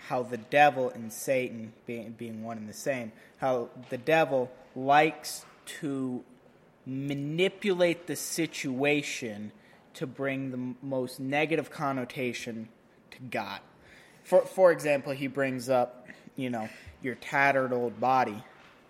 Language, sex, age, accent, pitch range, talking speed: English, male, 20-39, American, 125-155 Hz, 120 wpm